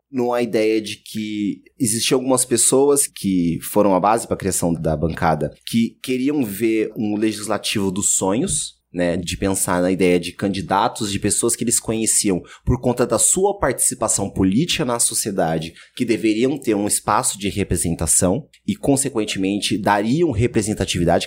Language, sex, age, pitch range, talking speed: Portuguese, male, 30-49, 90-115 Hz, 150 wpm